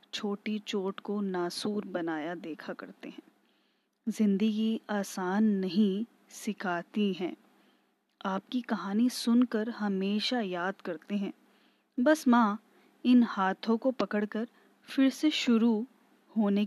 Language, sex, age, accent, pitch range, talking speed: Hindi, female, 20-39, native, 195-235 Hz, 105 wpm